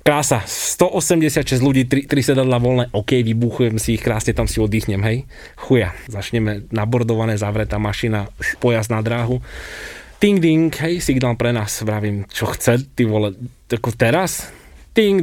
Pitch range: 105-135 Hz